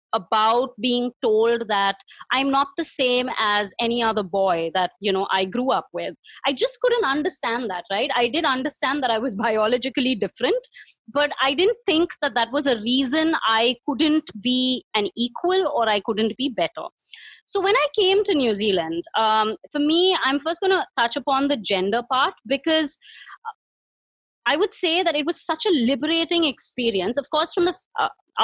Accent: Indian